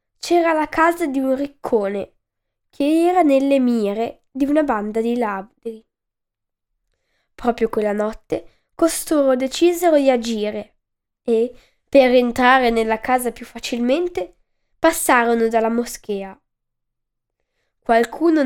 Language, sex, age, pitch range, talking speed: Italian, female, 10-29, 225-290 Hz, 105 wpm